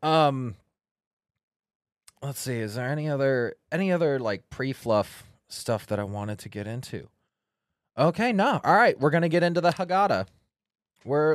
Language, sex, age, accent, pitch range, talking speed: English, male, 20-39, American, 115-145 Hz, 155 wpm